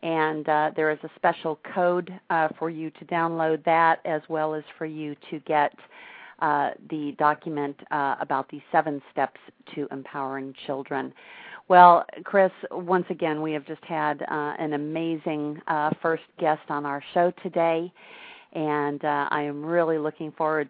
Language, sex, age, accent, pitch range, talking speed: English, female, 50-69, American, 150-175 Hz, 160 wpm